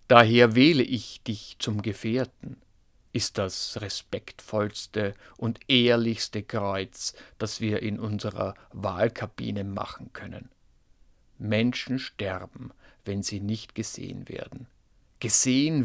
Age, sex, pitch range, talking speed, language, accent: 50-69, male, 105-125 Hz, 100 wpm, German, German